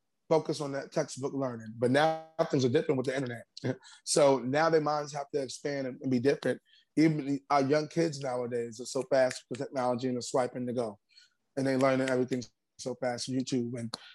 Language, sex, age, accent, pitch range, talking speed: English, male, 20-39, American, 125-155 Hz, 195 wpm